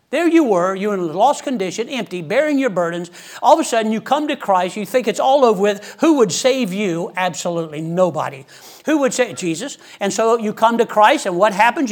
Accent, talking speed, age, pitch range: American, 230 wpm, 60-79, 230-315 Hz